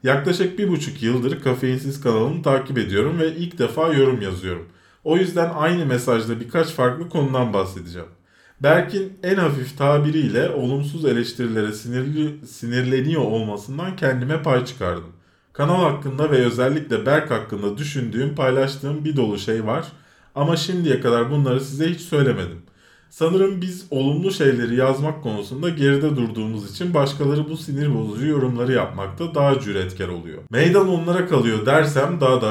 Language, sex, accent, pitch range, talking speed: Turkish, male, native, 120-155 Hz, 140 wpm